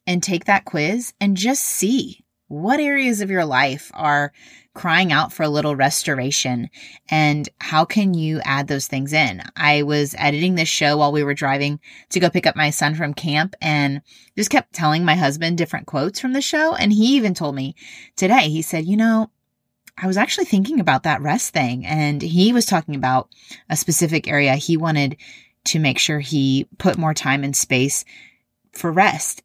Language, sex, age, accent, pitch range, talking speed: English, female, 30-49, American, 150-200 Hz, 190 wpm